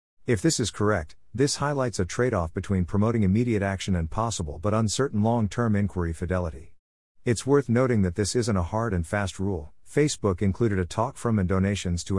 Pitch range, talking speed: 90-115 Hz, 185 wpm